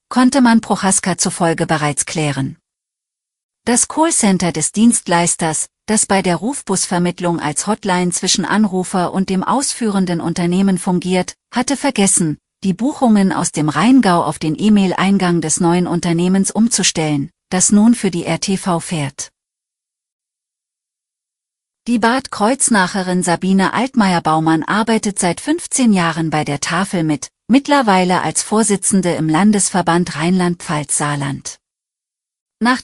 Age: 40-59